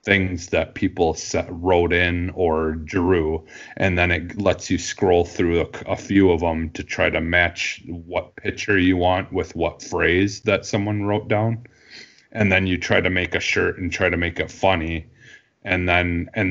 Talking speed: 190 wpm